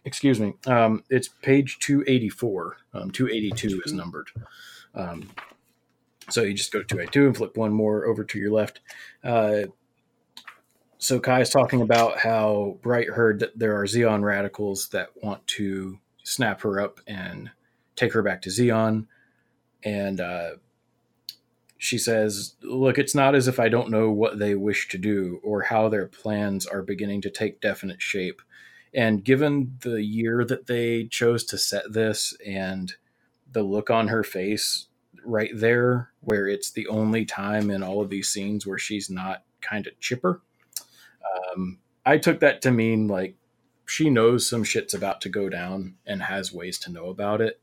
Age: 30-49